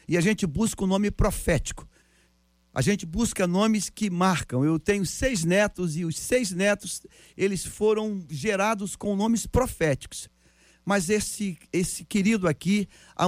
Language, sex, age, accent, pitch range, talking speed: Portuguese, male, 50-69, Brazilian, 160-210 Hz, 150 wpm